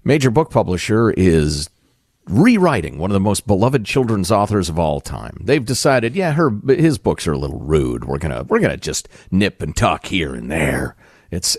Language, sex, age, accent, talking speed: English, male, 50-69, American, 190 wpm